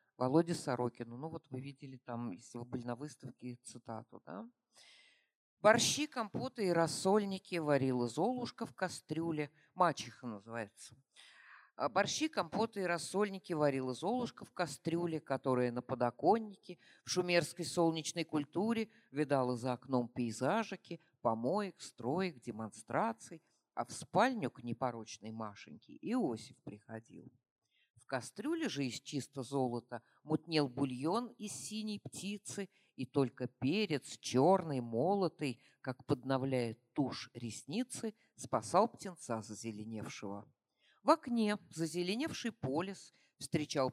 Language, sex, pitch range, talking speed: Russian, female, 125-185 Hz, 110 wpm